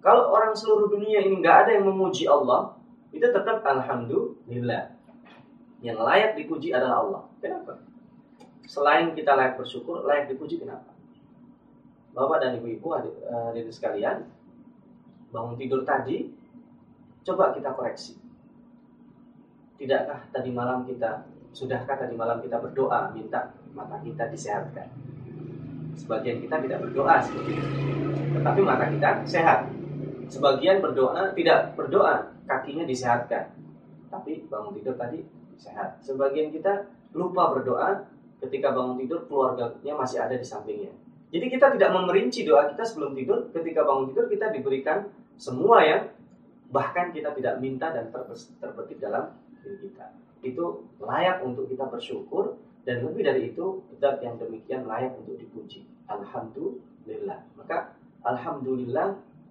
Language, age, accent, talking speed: Indonesian, 20-39, native, 130 wpm